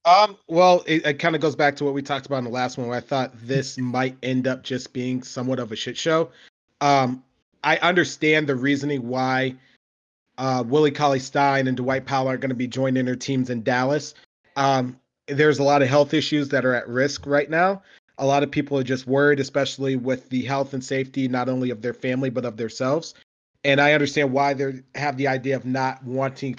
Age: 30-49